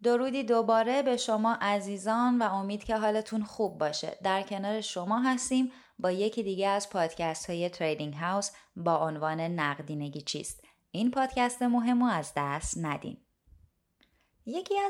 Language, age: Persian, 20-39